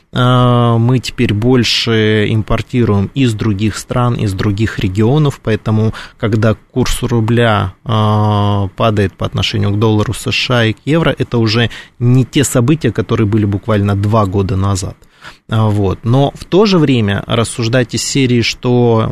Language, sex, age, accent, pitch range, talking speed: Russian, male, 20-39, native, 110-130 Hz, 135 wpm